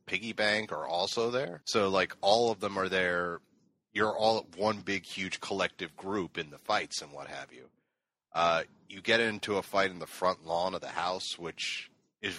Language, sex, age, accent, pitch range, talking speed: English, male, 30-49, American, 90-100 Hz, 200 wpm